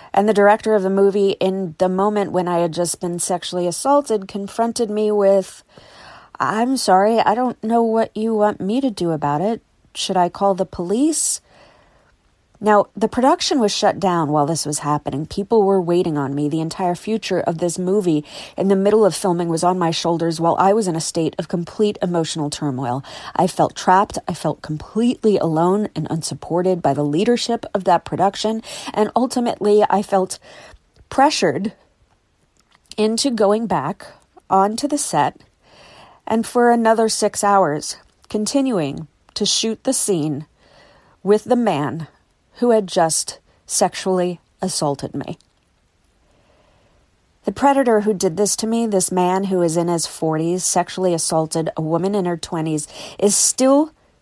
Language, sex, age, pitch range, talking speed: English, female, 40-59, 170-225 Hz, 160 wpm